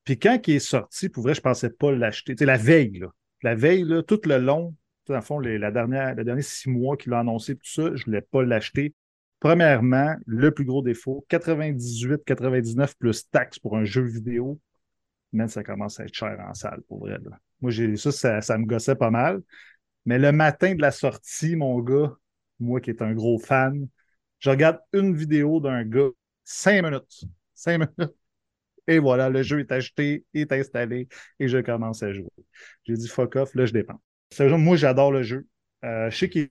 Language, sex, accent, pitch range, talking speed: French, male, Canadian, 120-150 Hz, 215 wpm